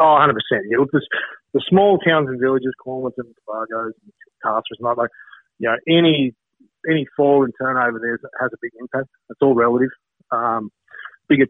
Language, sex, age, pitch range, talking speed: English, male, 30-49, 125-145 Hz, 160 wpm